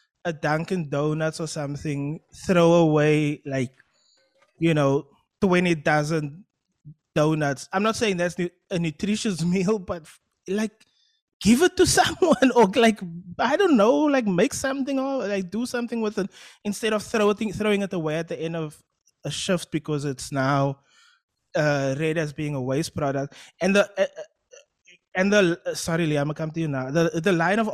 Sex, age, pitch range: male, 20-39, 150-210 Hz